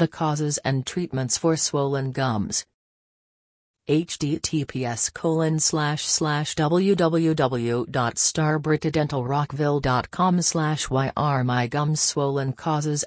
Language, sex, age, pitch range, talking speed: English, female, 40-59, 130-160 Hz, 70 wpm